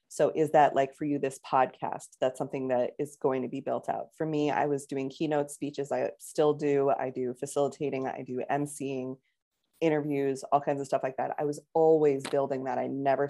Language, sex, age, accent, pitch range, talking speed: English, female, 20-39, American, 140-165 Hz, 210 wpm